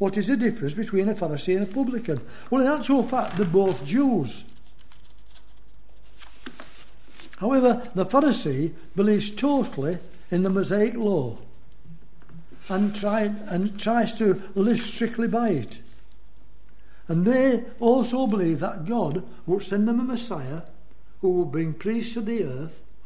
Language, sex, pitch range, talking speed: English, male, 165-230 Hz, 140 wpm